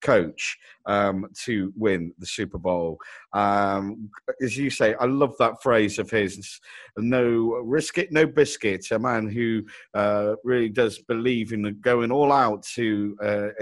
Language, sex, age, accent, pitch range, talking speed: English, male, 50-69, British, 110-165 Hz, 155 wpm